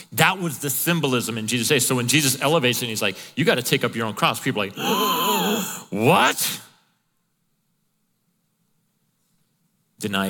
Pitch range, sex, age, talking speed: 105-175 Hz, male, 40-59, 155 wpm